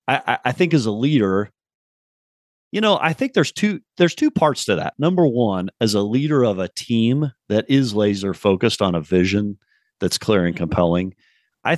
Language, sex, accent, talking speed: English, male, American, 190 wpm